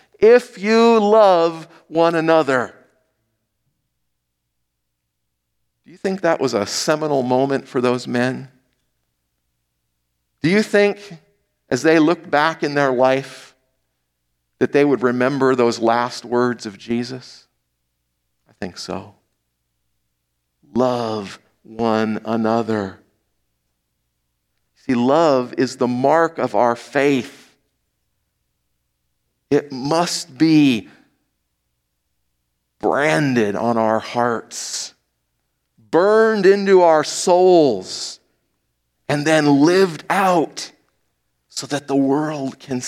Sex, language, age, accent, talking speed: male, English, 50-69, American, 95 wpm